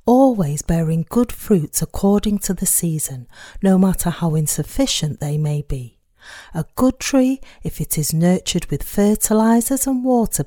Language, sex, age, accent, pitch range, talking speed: English, female, 40-59, British, 160-230 Hz, 150 wpm